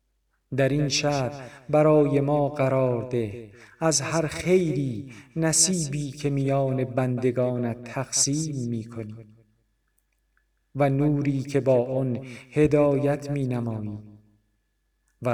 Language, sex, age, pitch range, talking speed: Persian, male, 50-69, 115-140 Hz, 95 wpm